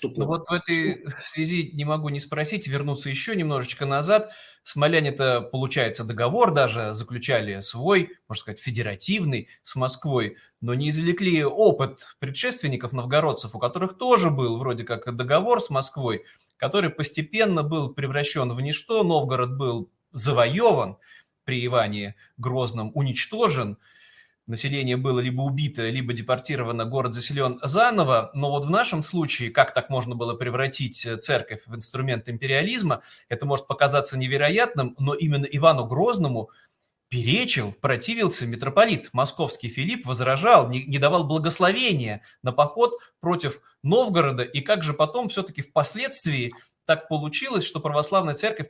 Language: Russian